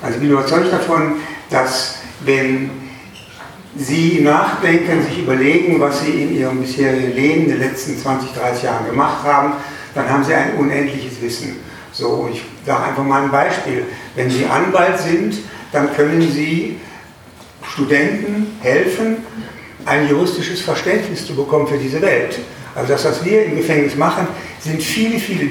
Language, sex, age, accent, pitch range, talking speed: German, male, 60-79, German, 135-165 Hz, 155 wpm